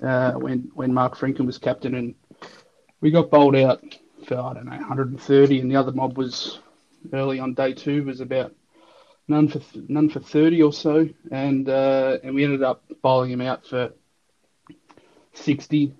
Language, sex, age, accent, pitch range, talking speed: English, male, 30-49, Australian, 130-145 Hz, 175 wpm